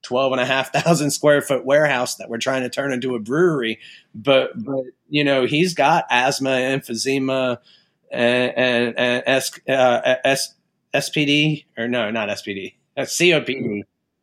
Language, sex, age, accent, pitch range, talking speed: English, male, 30-49, American, 115-145 Hz, 180 wpm